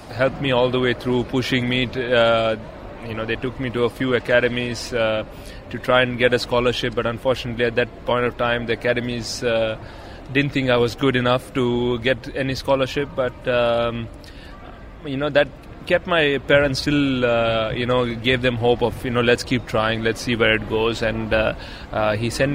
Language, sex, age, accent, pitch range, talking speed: English, male, 30-49, Indian, 110-130 Hz, 200 wpm